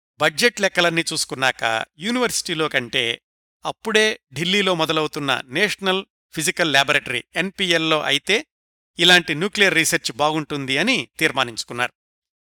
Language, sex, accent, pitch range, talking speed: Telugu, male, native, 140-175 Hz, 90 wpm